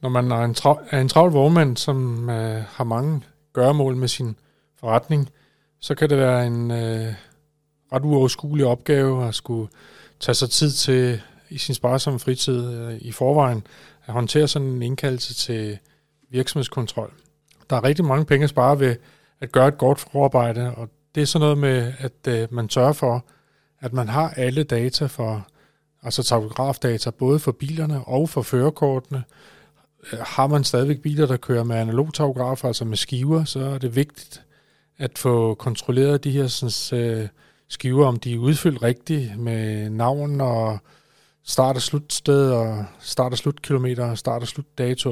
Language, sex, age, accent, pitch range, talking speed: Danish, male, 30-49, native, 120-145 Hz, 165 wpm